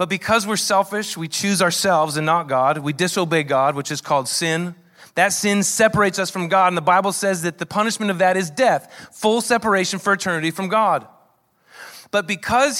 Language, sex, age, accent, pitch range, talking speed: English, male, 30-49, American, 145-200 Hz, 195 wpm